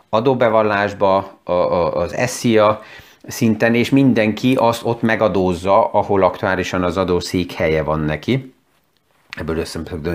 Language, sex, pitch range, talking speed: Hungarian, male, 95-120 Hz, 105 wpm